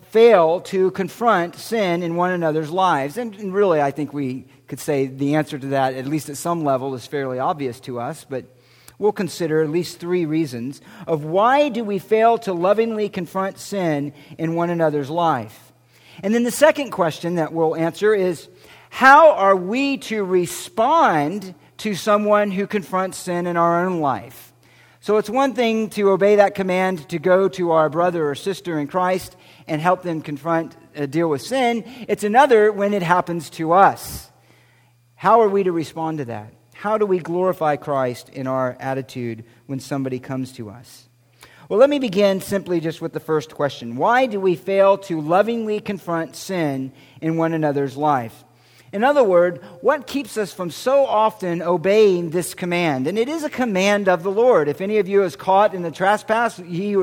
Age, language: 50-69, English